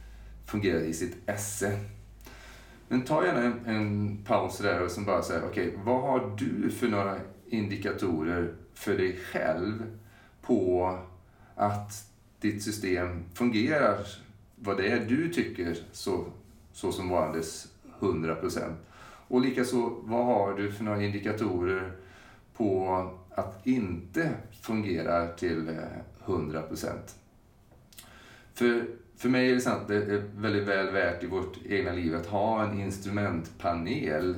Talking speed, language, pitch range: 130 wpm, Swedish, 90-110 Hz